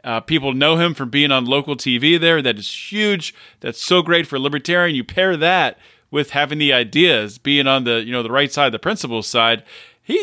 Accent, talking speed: American, 225 wpm